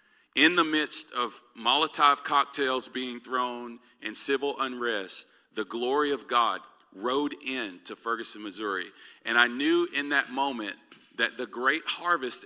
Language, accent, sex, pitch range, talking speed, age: English, American, male, 115-140 Hz, 145 wpm, 40-59